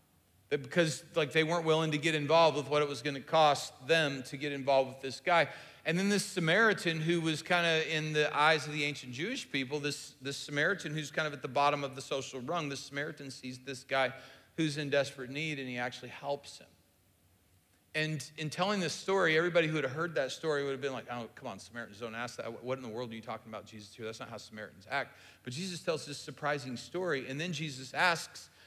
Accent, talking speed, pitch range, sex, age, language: American, 230 wpm, 130-165 Hz, male, 40-59, English